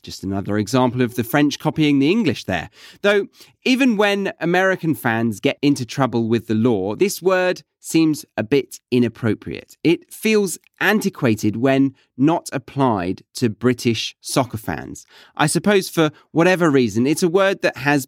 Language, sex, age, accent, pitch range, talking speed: English, male, 30-49, British, 120-185 Hz, 155 wpm